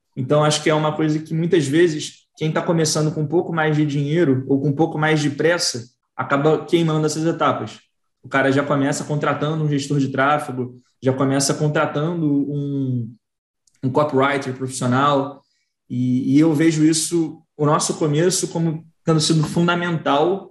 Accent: Brazilian